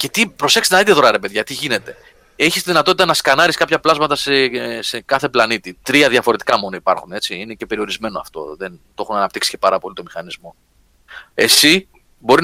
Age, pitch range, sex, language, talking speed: 30-49, 115-175 Hz, male, Greek, 195 wpm